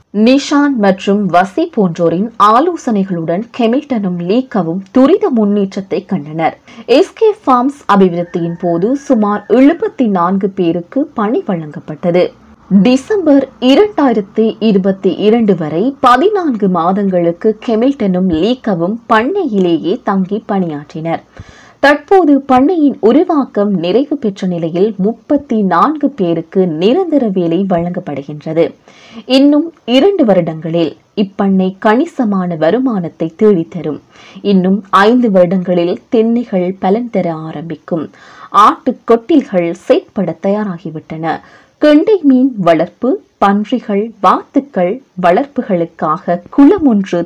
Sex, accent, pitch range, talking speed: female, native, 175-255 Hz, 70 wpm